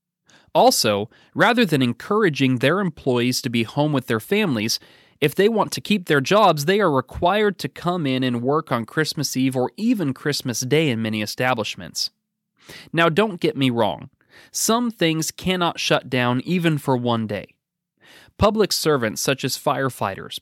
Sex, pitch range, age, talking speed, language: male, 125-175 Hz, 30-49, 165 wpm, English